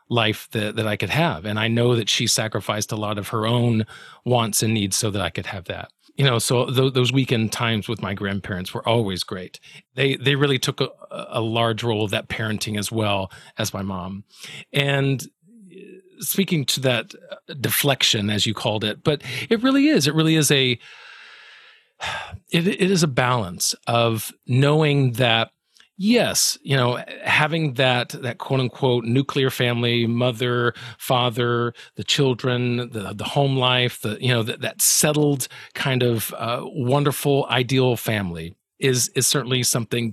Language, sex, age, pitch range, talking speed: English, male, 40-59, 115-140 Hz, 170 wpm